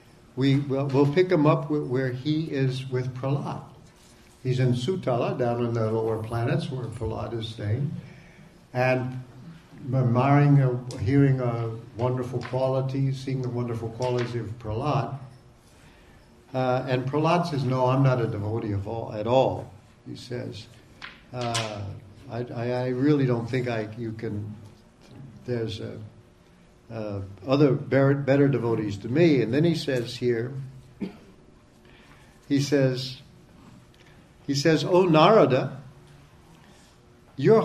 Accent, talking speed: American, 125 wpm